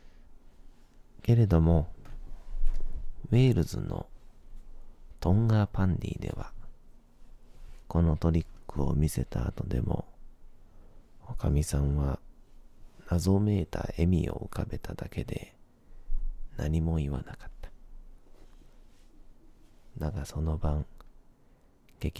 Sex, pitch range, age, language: male, 75-100 Hz, 40-59, Japanese